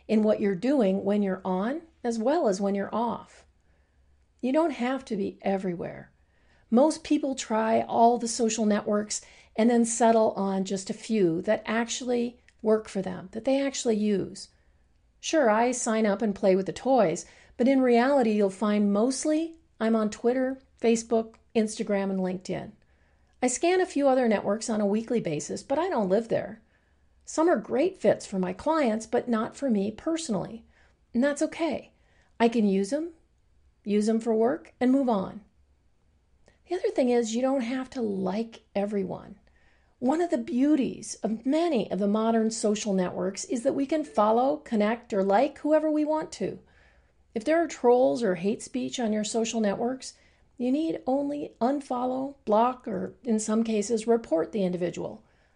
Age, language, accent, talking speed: 40-59, English, American, 175 wpm